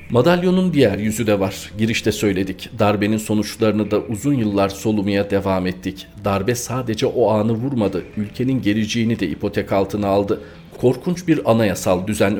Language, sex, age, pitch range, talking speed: Turkish, male, 40-59, 100-120 Hz, 145 wpm